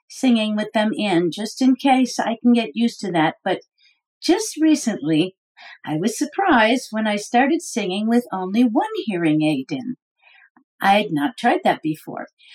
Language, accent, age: English, American, 50-69